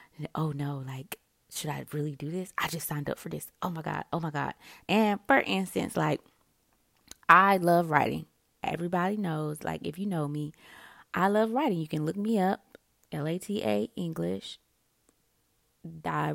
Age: 20-39